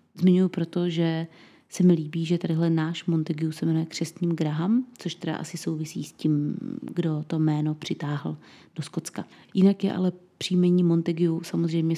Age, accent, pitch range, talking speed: 30-49, native, 165-190 Hz, 160 wpm